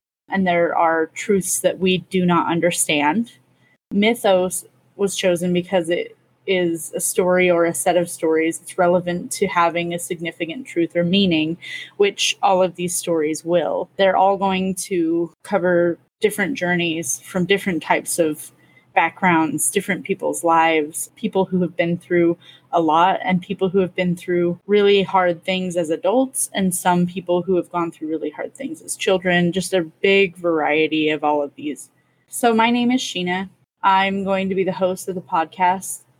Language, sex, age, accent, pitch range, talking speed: English, female, 20-39, American, 170-195 Hz, 170 wpm